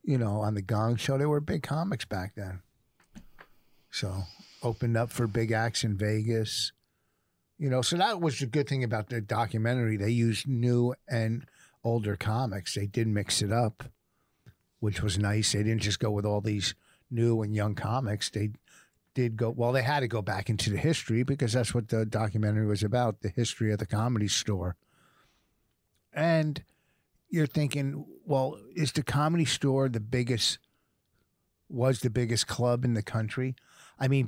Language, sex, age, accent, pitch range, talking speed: English, male, 50-69, American, 105-130 Hz, 175 wpm